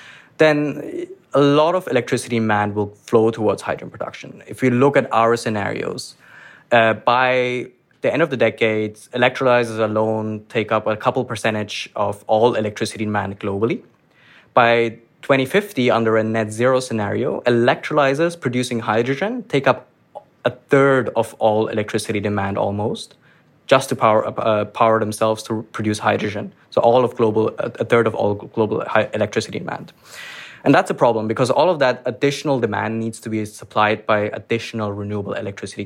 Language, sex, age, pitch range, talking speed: English, male, 20-39, 110-130 Hz, 155 wpm